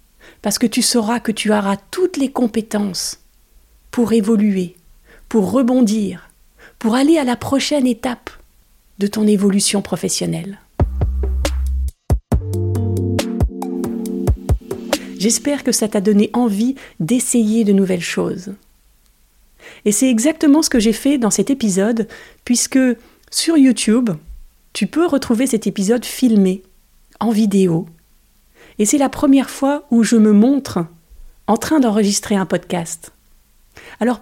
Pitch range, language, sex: 195-245 Hz, French, female